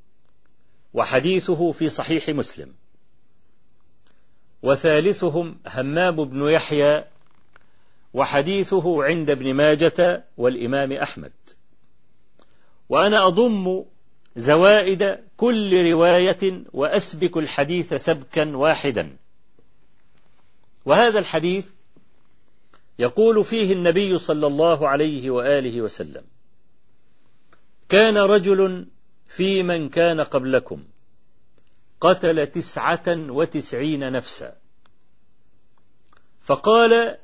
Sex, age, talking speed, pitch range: male, 50-69, 70 wpm, 150-190 Hz